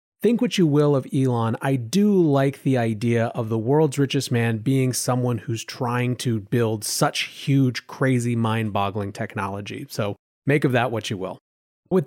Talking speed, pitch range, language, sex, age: 175 wpm, 115-165 Hz, English, male, 30-49